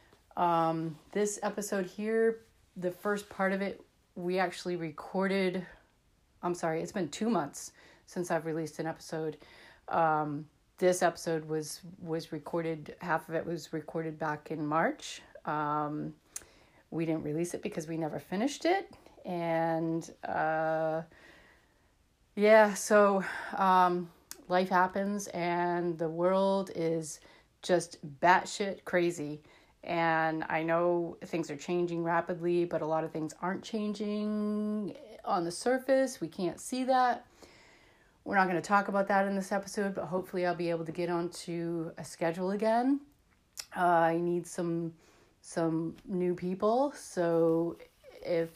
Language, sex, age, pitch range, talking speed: English, female, 30-49, 165-195 Hz, 140 wpm